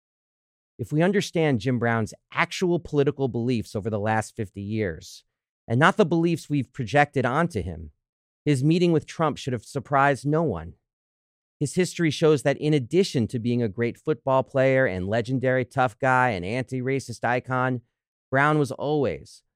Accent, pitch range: American, 100-135 Hz